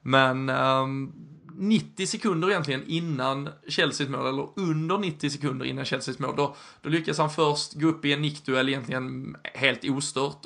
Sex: male